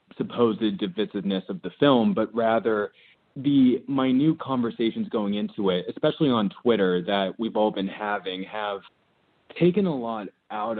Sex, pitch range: male, 100-120 Hz